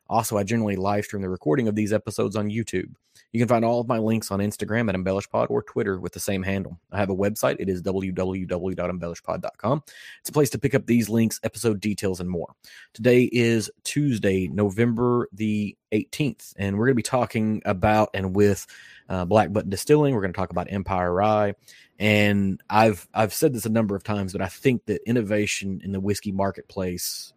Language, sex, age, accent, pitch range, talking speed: English, male, 30-49, American, 95-110 Hz, 200 wpm